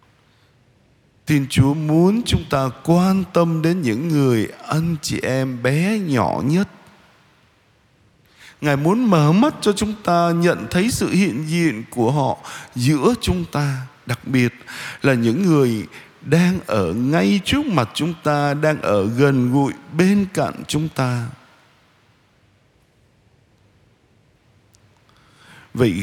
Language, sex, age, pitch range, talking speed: Vietnamese, male, 60-79, 120-165 Hz, 125 wpm